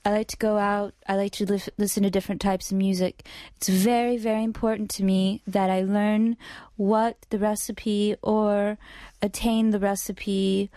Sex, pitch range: female, 190-215 Hz